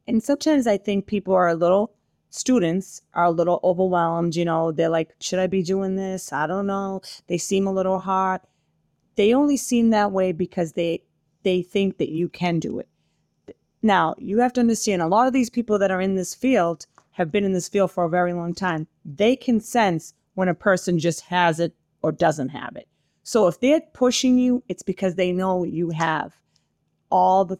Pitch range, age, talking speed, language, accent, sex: 175-210 Hz, 30-49, 205 wpm, English, American, female